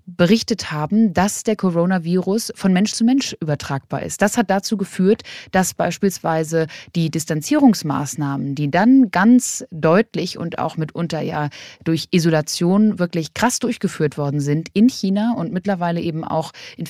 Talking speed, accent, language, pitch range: 145 wpm, German, German, 165-205 Hz